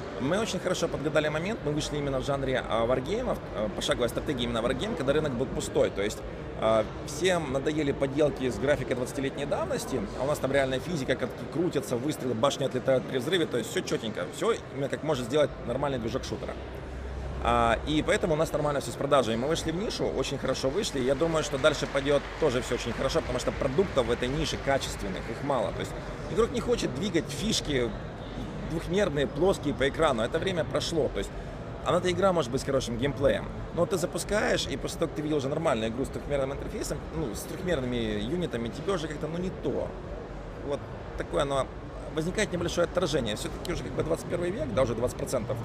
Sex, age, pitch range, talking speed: male, 30-49, 130-160 Hz, 200 wpm